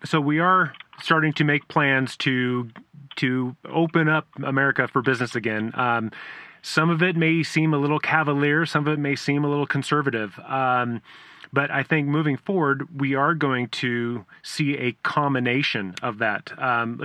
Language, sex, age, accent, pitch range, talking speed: English, male, 30-49, American, 125-150 Hz, 170 wpm